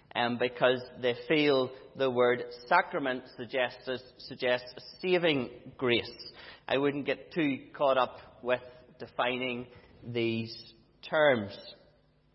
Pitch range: 125-160 Hz